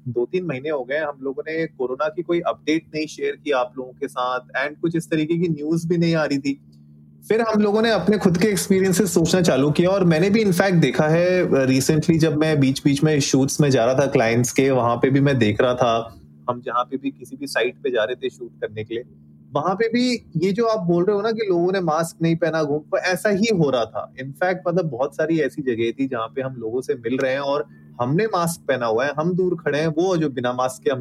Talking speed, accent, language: 125 wpm, native, Hindi